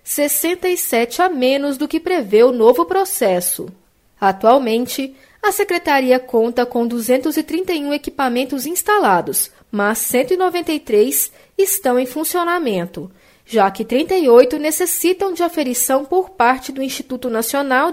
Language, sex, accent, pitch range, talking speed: Portuguese, female, Brazilian, 230-335 Hz, 110 wpm